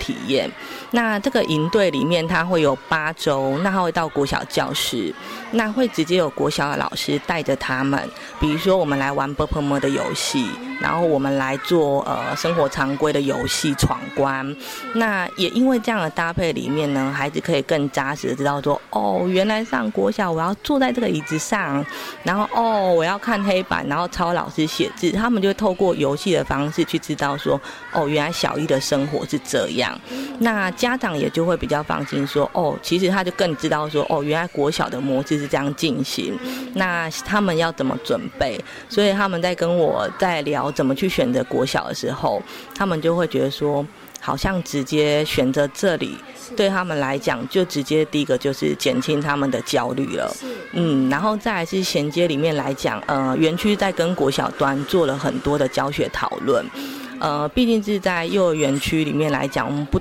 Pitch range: 145-200 Hz